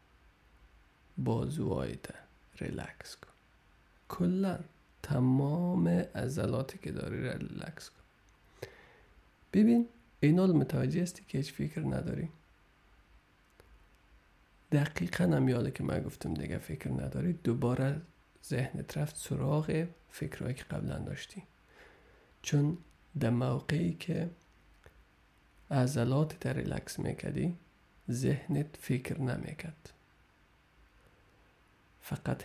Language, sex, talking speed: Persian, male, 85 wpm